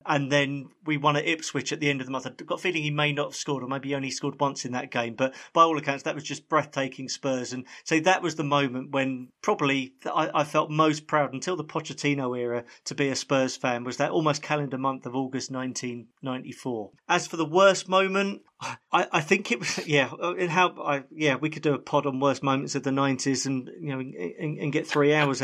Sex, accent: male, British